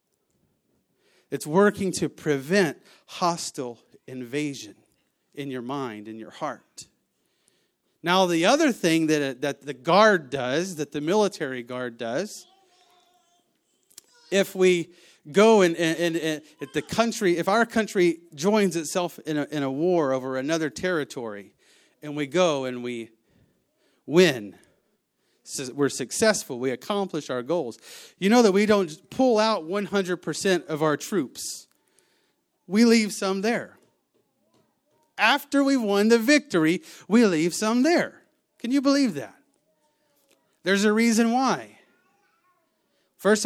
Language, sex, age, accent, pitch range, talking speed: English, male, 40-59, American, 150-210 Hz, 125 wpm